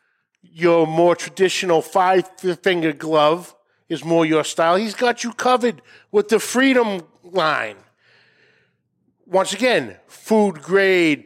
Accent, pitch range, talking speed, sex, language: American, 160-205 Hz, 105 wpm, male, English